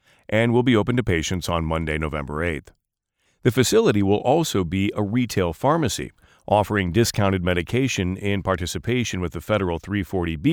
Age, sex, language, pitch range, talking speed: 40-59, male, English, 85-115 Hz, 155 wpm